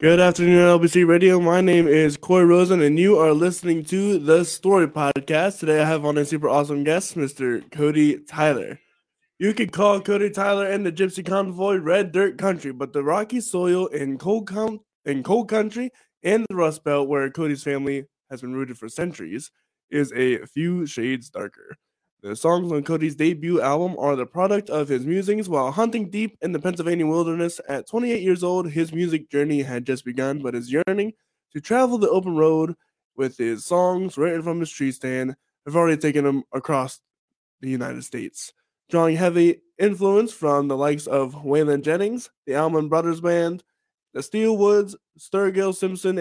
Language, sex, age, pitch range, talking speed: English, male, 20-39, 145-185 Hz, 175 wpm